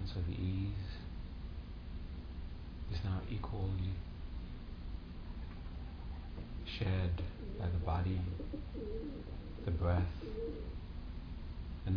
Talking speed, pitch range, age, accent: 65 wpm, 80-95 Hz, 50-69, American